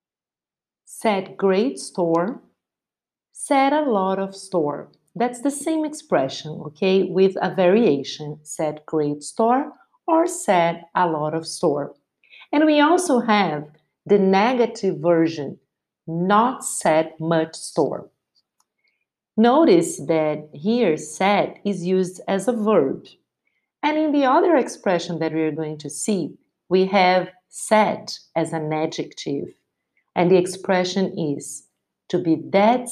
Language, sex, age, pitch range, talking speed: English, female, 50-69, 165-235 Hz, 125 wpm